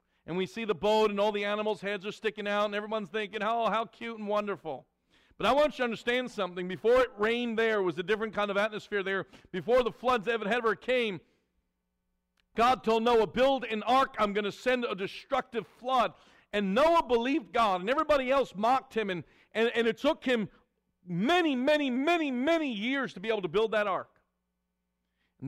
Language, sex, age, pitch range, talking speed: English, male, 50-69, 205-265 Hz, 205 wpm